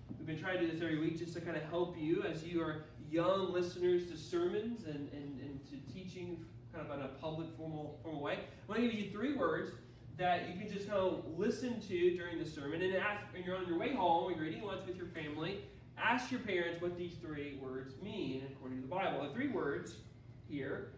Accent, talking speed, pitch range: American, 235 wpm, 135-185 Hz